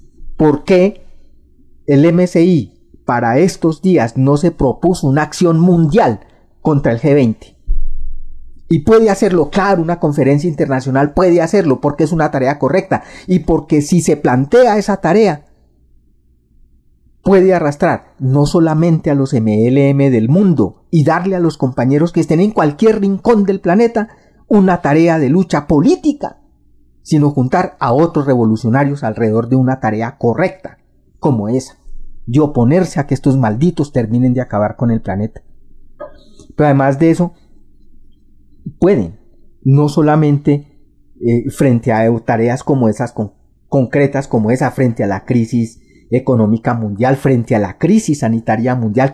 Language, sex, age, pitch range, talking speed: Spanish, male, 40-59, 120-165 Hz, 140 wpm